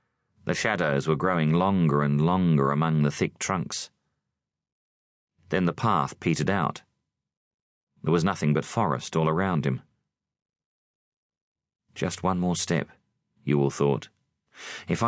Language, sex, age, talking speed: English, male, 40-59, 125 wpm